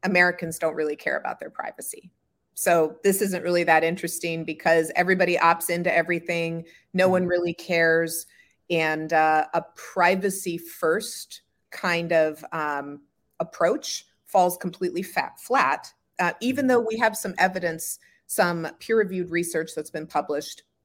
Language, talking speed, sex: English, 140 wpm, female